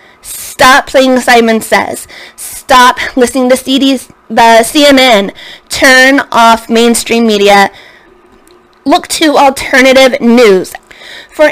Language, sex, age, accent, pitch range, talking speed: English, female, 20-39, American, 240-275 Hz, 100 wpm